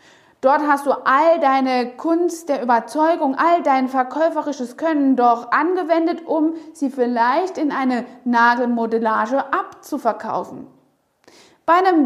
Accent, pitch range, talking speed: German, 255-330 Hz, 115 wpm